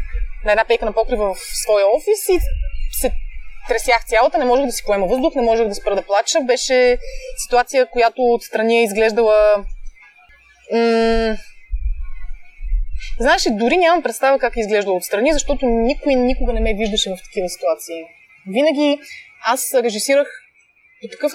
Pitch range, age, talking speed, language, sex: 210-295 Hz, 20-39, 150 wpm, Bulgarian, female